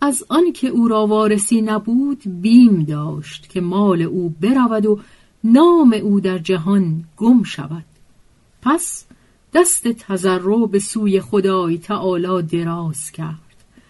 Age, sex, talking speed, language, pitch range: 40-59, female, 130 wpm, Persian, 170-235 Hz